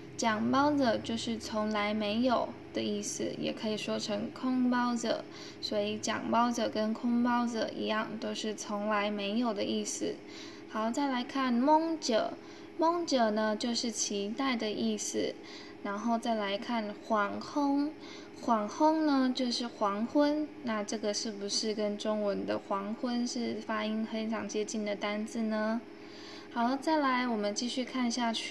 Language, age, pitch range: Vietnamese, 10-29, 210-265 Hz